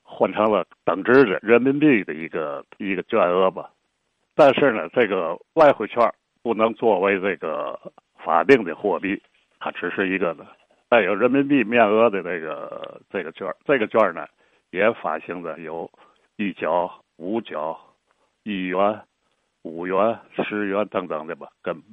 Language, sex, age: Chinese, male, 60-79